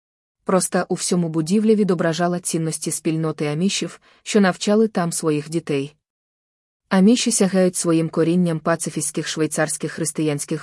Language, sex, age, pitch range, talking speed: Ukrainian, female, 20-39, 155-180 Hz, 115 wpm